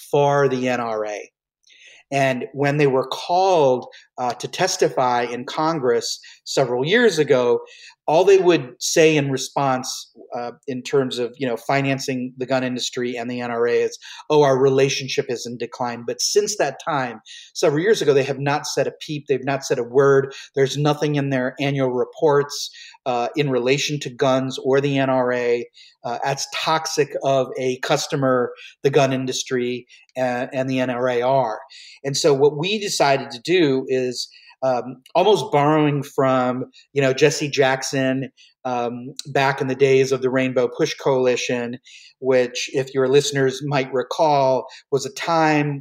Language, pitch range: English, 130-150 Hz